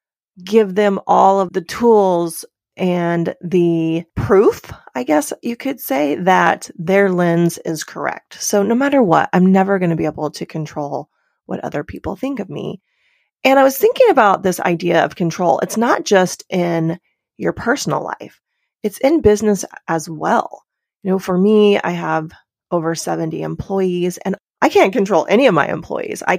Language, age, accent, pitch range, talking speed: English, 30-49, American, 170-210 Hz, 175 wpm